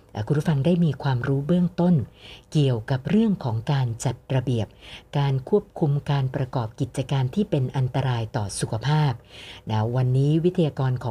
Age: 60-79